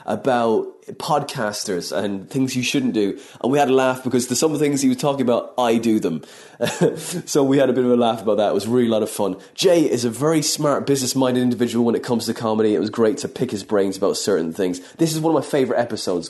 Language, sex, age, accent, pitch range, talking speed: English, male, 20-39, British, 115-140 Hz, 260 wpm